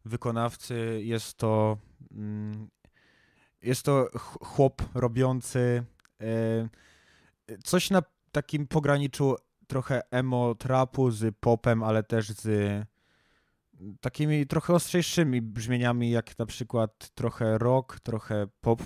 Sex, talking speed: male, 95 wpm